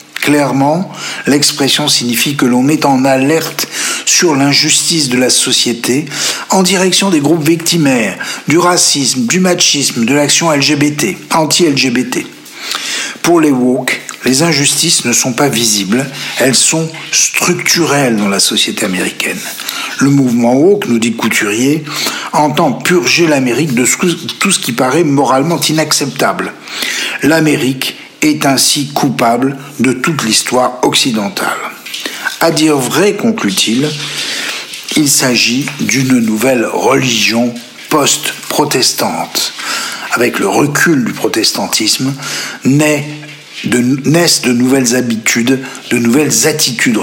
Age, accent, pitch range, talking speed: 60-79, French, 125-160 Hz, 115 wpm